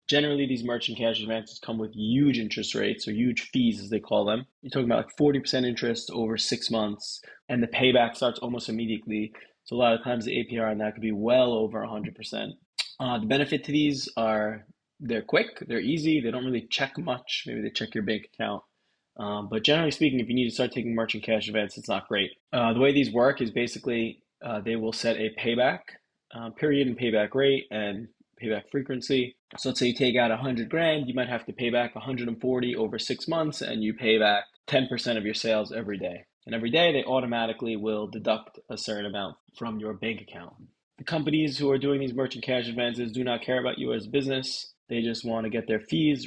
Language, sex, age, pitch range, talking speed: English, male, 20-39, 110-130 Hz, 220 wpm